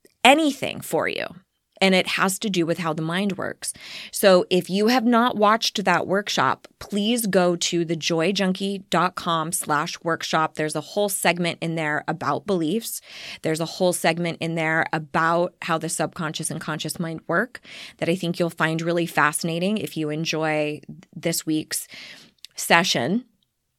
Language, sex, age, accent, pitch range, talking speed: English, female, 20-39, American, 165-190 Hz, 155 wpm